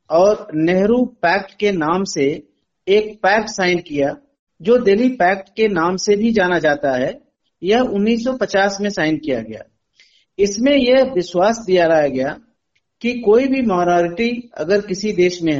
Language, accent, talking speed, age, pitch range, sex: Hindi, native, 150 wpm, 50-69, 175-230 Hz, male